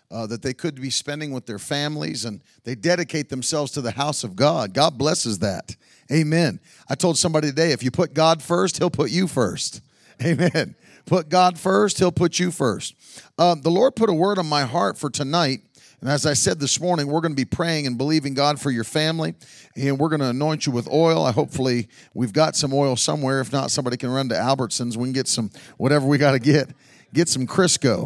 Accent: American